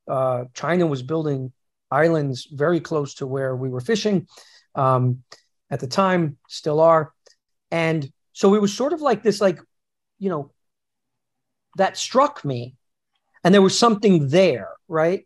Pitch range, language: 145-185 Hz, English